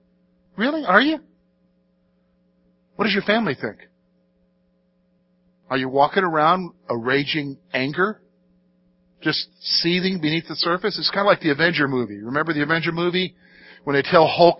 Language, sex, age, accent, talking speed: English, male, 50-69, American, 145 wpm